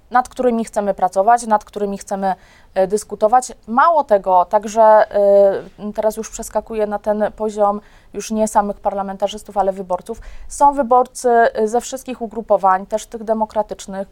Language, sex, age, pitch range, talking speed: Polish, female, 20-39, 190-220 Hz, 130 wpm